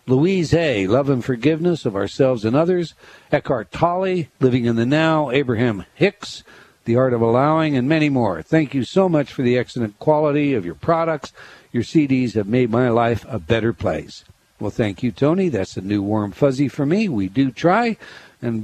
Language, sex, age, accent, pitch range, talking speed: English, male, 60-79, American, 115-160 Hz, 190 wpm